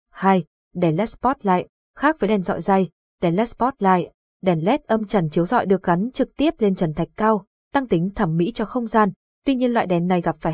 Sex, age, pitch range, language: female, 20-39, 185-235 Hz, Vietnamese